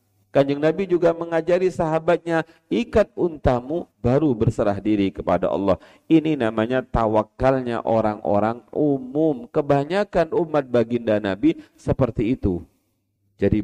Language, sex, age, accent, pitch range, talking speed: Indonesian, male, 40-59, native, 110-175 Hz, 105 wpm